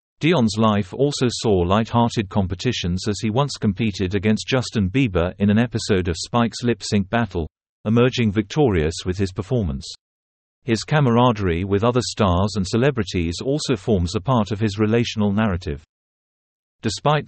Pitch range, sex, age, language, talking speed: 95-120 Hz, male, 50-69, English, 145 wpm